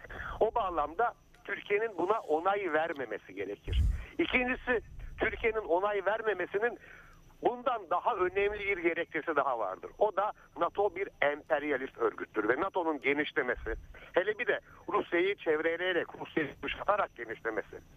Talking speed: 115 wpm